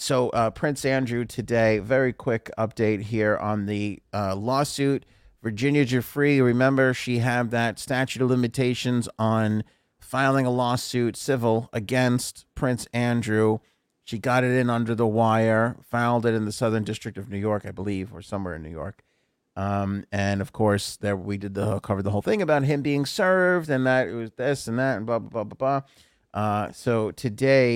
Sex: male